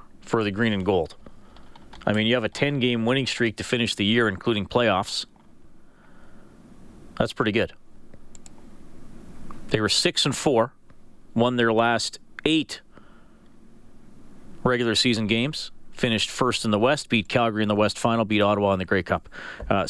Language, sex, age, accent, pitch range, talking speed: English, male, 40-59, American, 115-170 Hz, 155 wpm